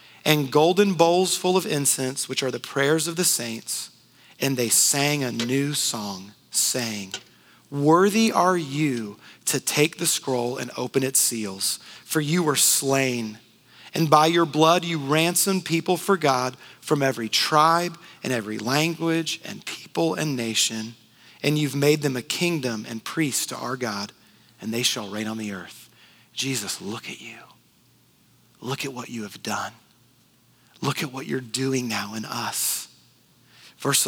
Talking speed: 160 wpm